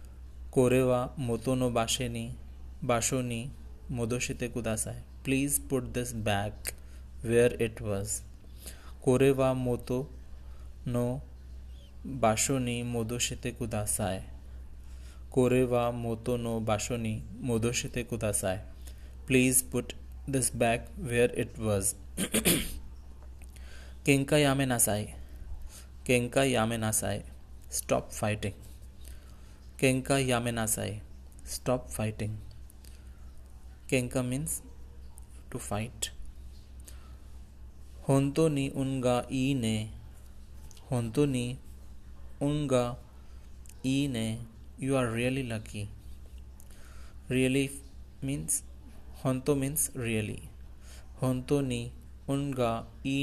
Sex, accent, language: male, Indian, Japanese